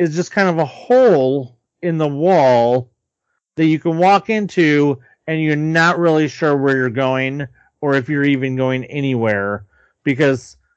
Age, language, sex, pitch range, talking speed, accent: 30-49, English, male, 120-150 Hz, 160 wpm, American